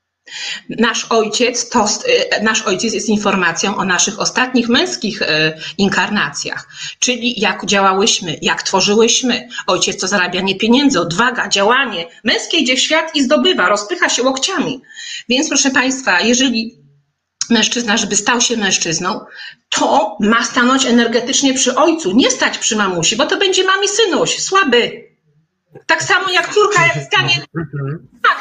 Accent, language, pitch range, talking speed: native, Polish, 215-300 Hz, 130 wpm